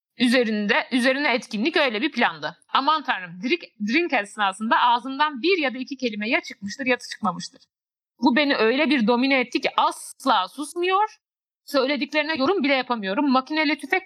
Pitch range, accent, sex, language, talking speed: 240-315 Hz, native, female, Turkish, 155 wpm